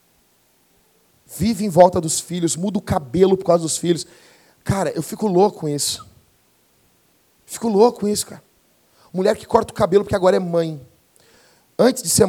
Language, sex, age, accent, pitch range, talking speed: Portuguese, male, 40-59, Brazilian, 155-210 Hz, 170 wpm